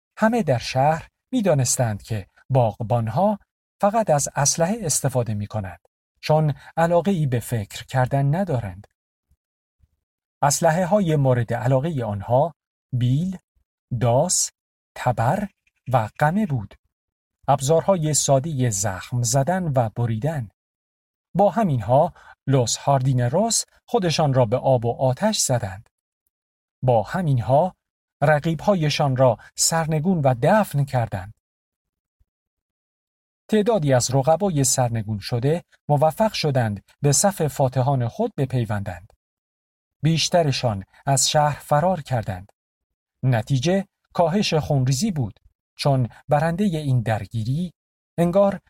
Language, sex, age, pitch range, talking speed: Persian, male, 40-59, 115-165 Hz, 100 wpm